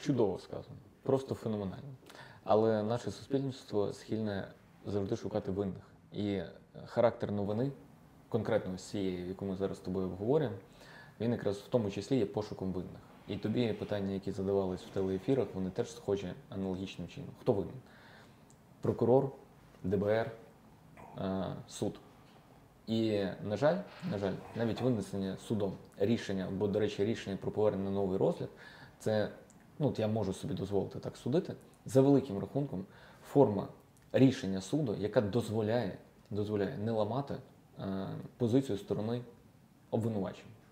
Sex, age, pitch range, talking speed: male, 20-39, 100-125 Hz, 135 wpm